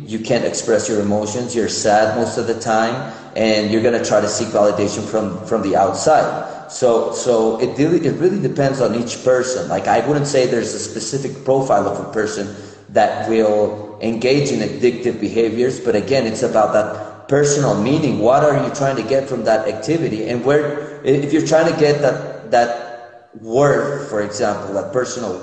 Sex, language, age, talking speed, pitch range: male, English, 30-49, 185 wpm, 115-135 Hz